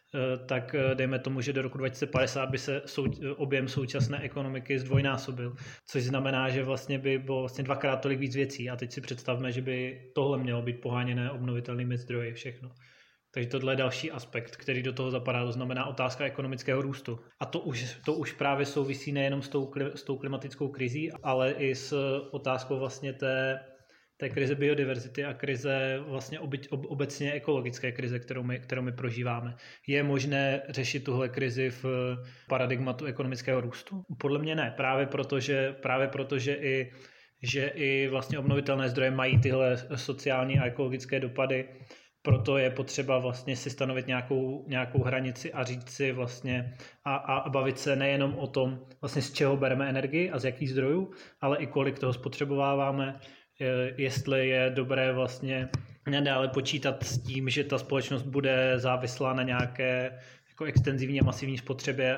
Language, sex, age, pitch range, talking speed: Slovak, male, 20-39, 130-140 Hz, 160 wpm